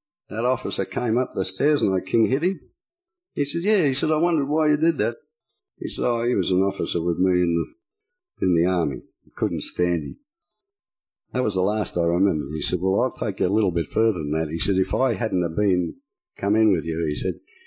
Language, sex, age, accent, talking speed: English, male, 60-79, Australian, 240 wpm